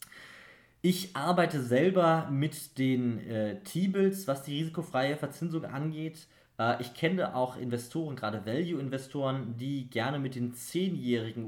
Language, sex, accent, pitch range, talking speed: German, male, German, 110-155 Hz, 125 wpm